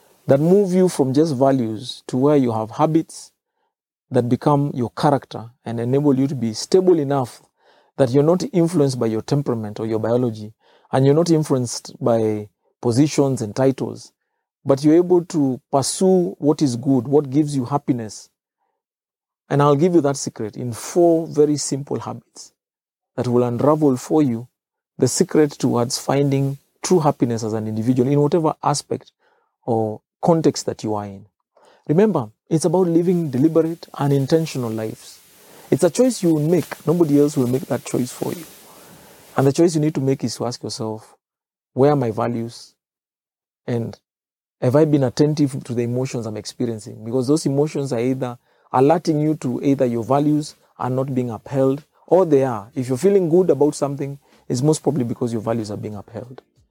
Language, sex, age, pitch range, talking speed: English, male, 40-59, 115-150 Hz, 175 wpm